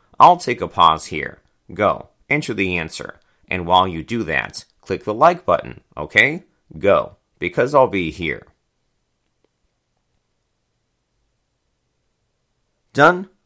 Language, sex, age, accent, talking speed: English, male, 30-49, American, 110 wpm